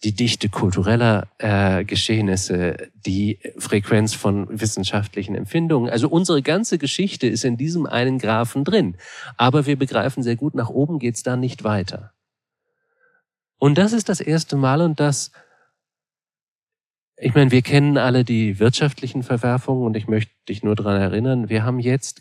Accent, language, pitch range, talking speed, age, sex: German, German, 100-135 Hz, 155 wpm, 40-59, male